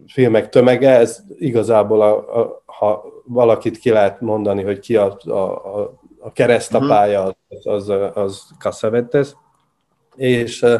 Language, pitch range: Hungarian, 105-130 Hz